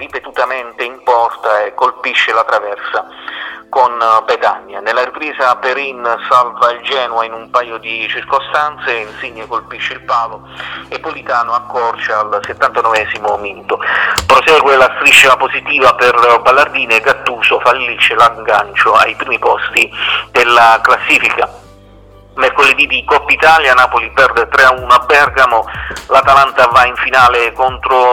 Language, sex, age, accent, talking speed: Italian, male, 40-59, native, 125 wpm